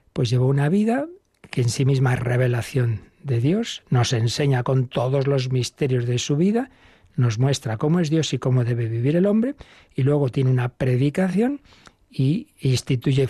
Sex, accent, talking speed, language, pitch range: male, Spanish, 180 wpm, Spanish, 130-185 Hz